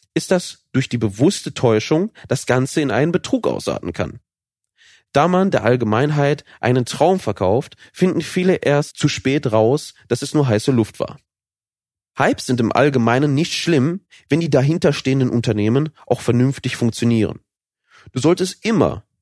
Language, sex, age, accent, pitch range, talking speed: German, male, 30-49, German, 115-155 Hz, 150 wpm